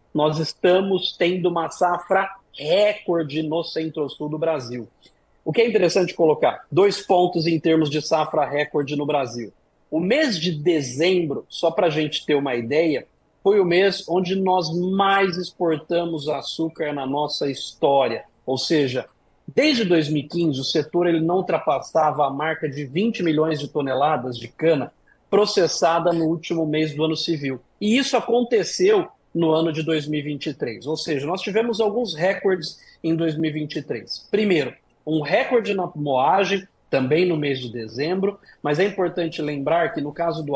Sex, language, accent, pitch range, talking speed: male, Portuguese, Brazilian, 150-185 Hz, 150 wpm